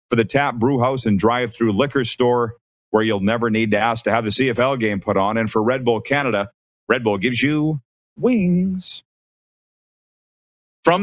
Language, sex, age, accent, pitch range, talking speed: English, male, 40-59, American, 105-140 Hz, 185 wpm